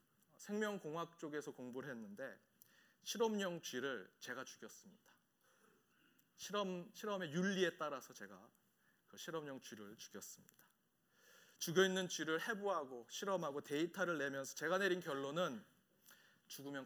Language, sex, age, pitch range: Korean, male, 30-49, 145-195 Hz